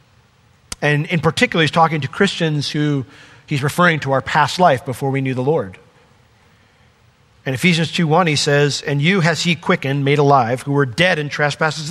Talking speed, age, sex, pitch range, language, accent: 180 wpm, 40-59, male, 145-205 Hz, English, American